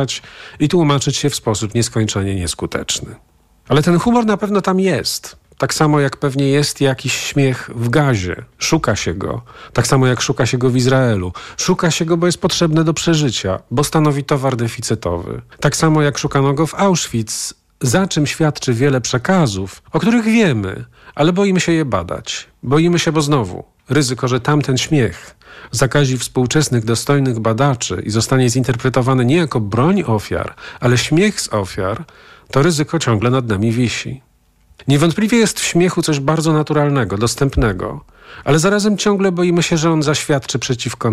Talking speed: 165 wpm